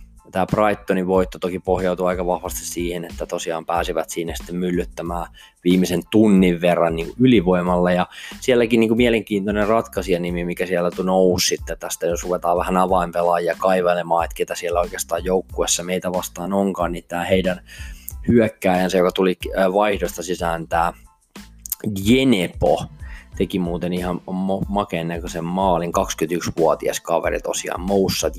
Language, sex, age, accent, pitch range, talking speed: Finnish, male, 20-39, native, 85-95 Hz, 135 wpm